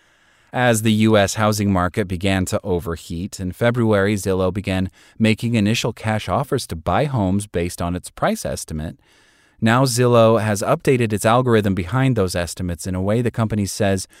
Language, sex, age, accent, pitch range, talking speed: English, male, 30-49, American, 90-120 Hz, 165 wpm